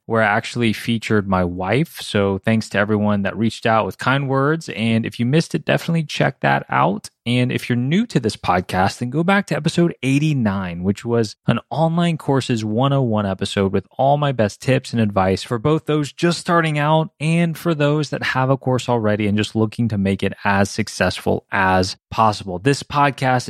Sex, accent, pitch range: male, American, 105-140 Hz